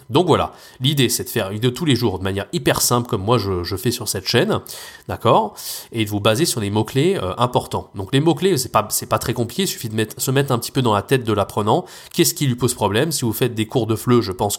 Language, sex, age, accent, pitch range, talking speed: French, male, 20-39, French, 105-130 Hz, 290 wpm